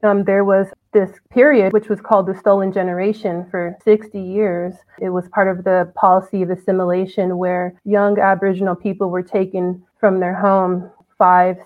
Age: 20-39